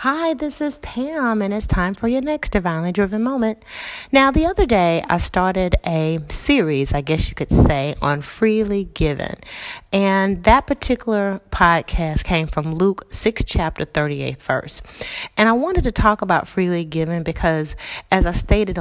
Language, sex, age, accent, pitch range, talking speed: English, female, 30-49, American, 155-215 Hz, 165 wpm